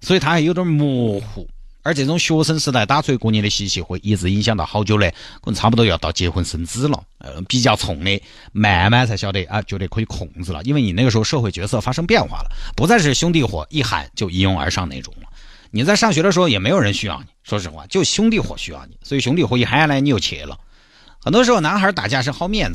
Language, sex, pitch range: Chinese, male, 95-135 Hz